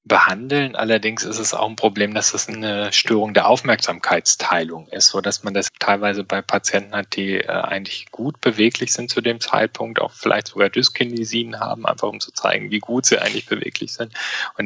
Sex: male